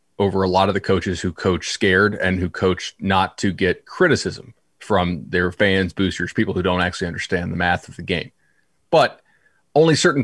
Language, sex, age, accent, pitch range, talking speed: English, male, 30-49, American, 95-125 Hz, 195 wpm